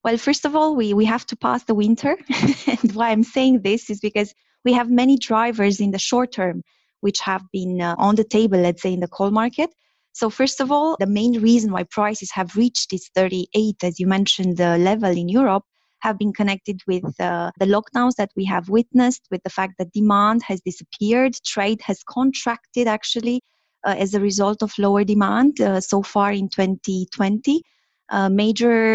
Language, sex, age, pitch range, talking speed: English, female, 20-39, 195-235 Hz, 200 wpm